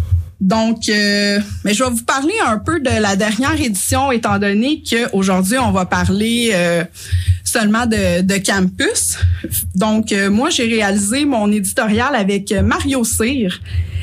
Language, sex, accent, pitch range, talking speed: French, female, Canadian, 180-235 Hz, 150 wpm